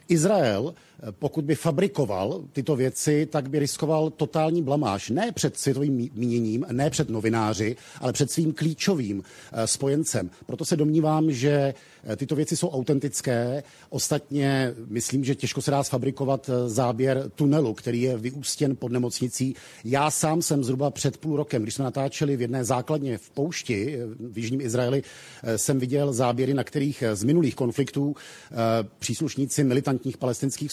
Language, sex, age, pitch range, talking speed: Czech, male, 50-69, 125-155 Hz, 145 wpm